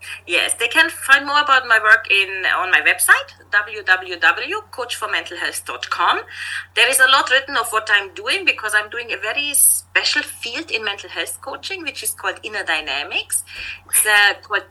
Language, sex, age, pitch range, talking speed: English, female, 30-49, 210-295 Hz, 165 wpm